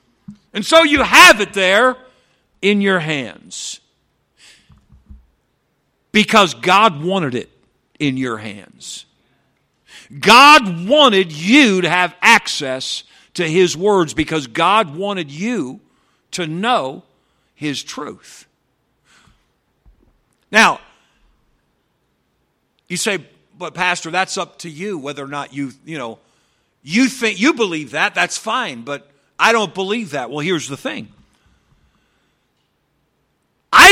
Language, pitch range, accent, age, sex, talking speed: English, 150-215 Hz, American, 50-69, male, 115 wpm